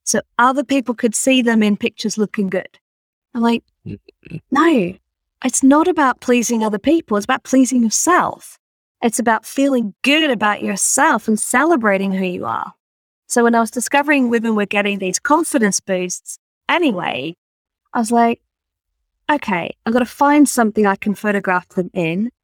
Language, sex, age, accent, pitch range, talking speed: English, female, 30-49, British, 205-285 Hz, 160 wpm